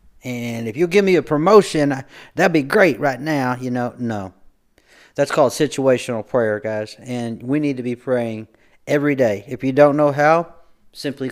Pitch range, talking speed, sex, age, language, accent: 115-145 Hz, 180 wpm, male, 40-59, English, American